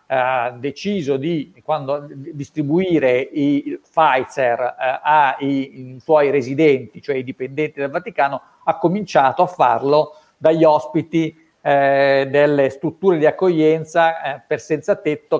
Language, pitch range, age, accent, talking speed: Italian, 140-175 Hz, 50-69, native, 120 wpm